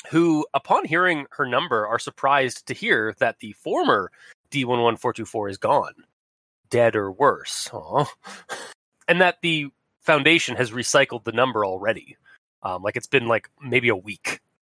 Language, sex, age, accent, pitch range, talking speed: English, male, 30-49, American, 110-160 Hz, 145 wpm